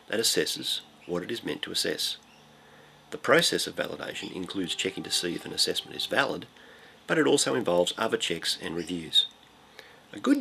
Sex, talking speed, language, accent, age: male, 180 wpm, English, Australian, 40-59